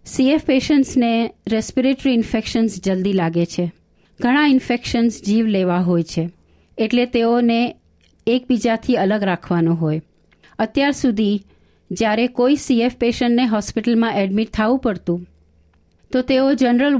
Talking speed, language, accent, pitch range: 100 wpm, Gujarati, native, 195-245 Hz